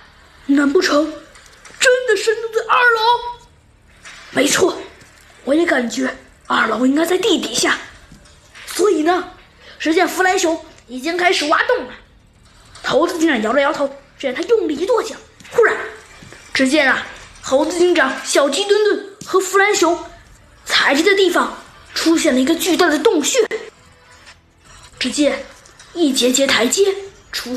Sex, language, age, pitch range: female, Chinese, 20-39, 265-375 Hz